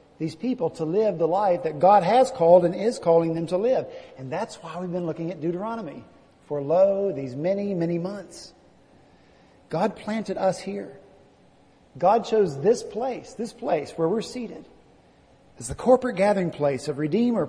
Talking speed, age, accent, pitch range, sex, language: 170 wpm, 50-69, American, 165-220 Hz, male, English